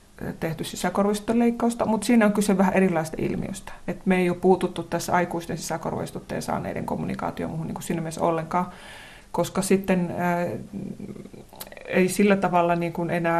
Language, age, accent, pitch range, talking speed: Finnish, 30-49, native, 165-185 Hz, 150 wpm